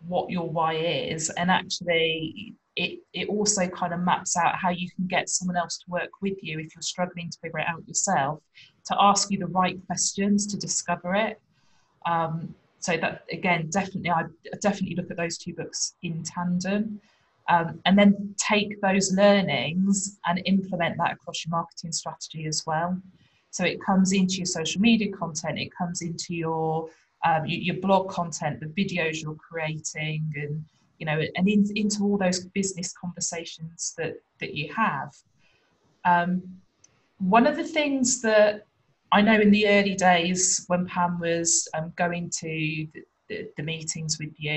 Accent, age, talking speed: British, 20-39, 170 wpm